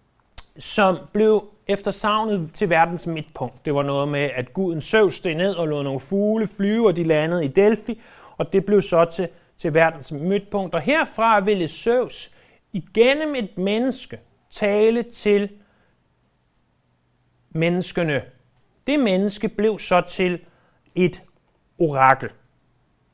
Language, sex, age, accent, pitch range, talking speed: Danish, male, 30-49, native, 150-215 Hz, 125 wpm